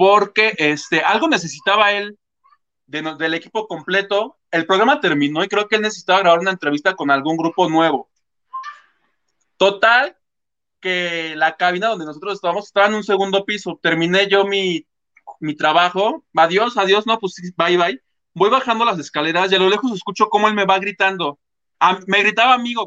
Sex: male